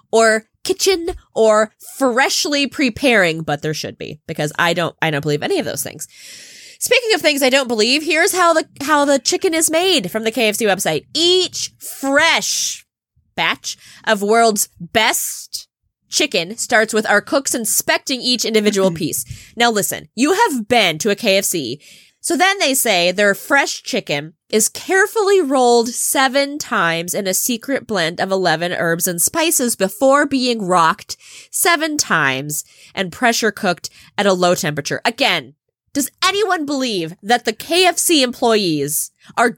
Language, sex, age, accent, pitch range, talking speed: English, female, 20-39, American, 190-295 Hz, 155 wpm